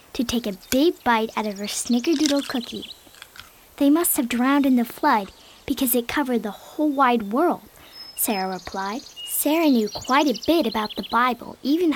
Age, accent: 10-29, American